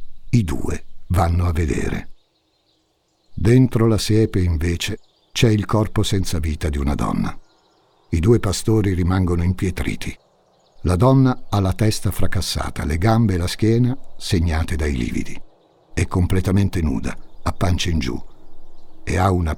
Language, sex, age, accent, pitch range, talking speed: Italian, male, 60-79, native, 85-110 Hz, 140 wpm